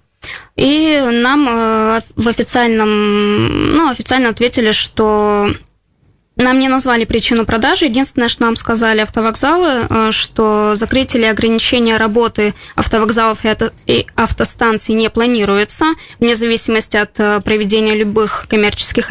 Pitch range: 215-255 Hz